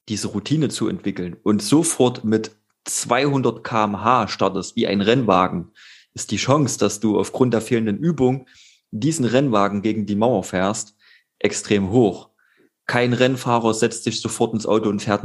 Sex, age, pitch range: male, 30-49, 100-125 Hz